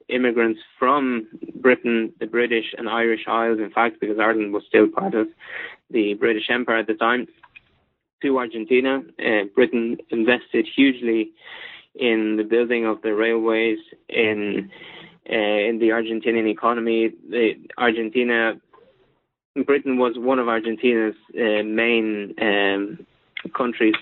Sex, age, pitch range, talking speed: male, 20-39, 110-125 Hz, 125 wpm